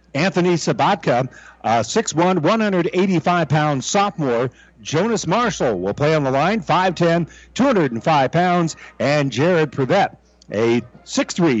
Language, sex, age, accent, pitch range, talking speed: English, male, 50-69, American, 140-190 Hz, 105 wpm